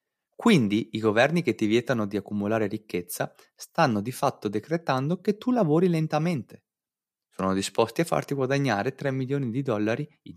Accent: native